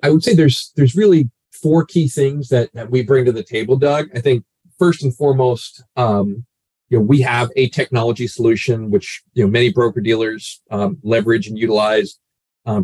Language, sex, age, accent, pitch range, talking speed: English, male, 40-59, American, 105-130 Hz, 190 wpm